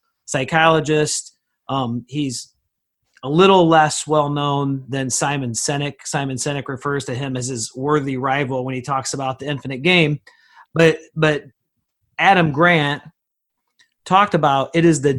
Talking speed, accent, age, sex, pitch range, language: 140 wpm, American, 40-59, male, 140-170 Hz, English